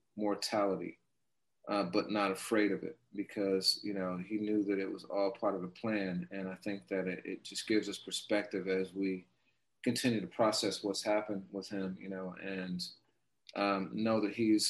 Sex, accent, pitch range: male, American, 95-110 Hz